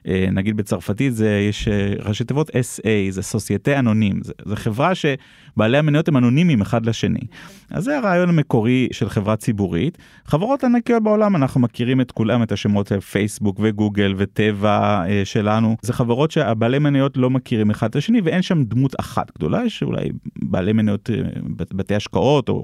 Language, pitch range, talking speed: Hebrew, 105-135 Hz, 160 wpm